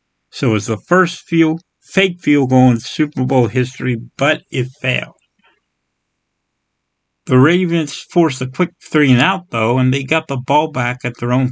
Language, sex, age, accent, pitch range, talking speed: English, male, 50-69, American, 125-155 Hz, 160 wpm